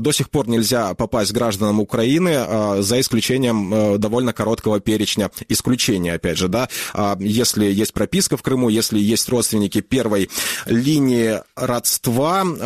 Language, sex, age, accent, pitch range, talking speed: Russian, male, 20-39, native, 110-140 Hz, 130 wpm